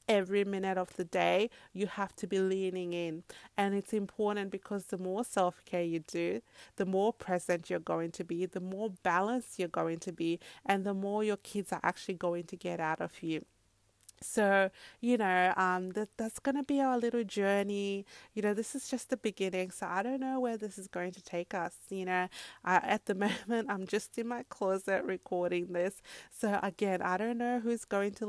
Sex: female